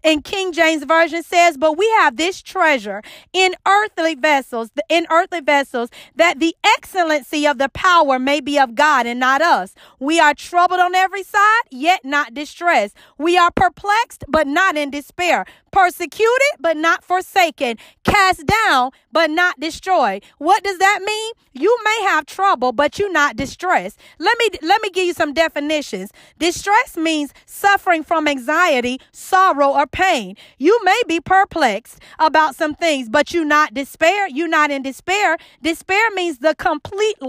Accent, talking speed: American, 160 wpm